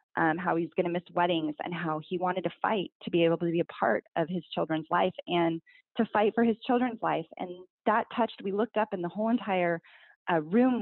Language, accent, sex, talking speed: English, American, female, 240 wpm